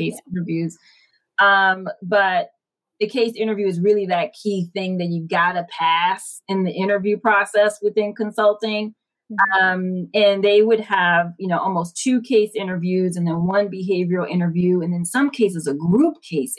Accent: American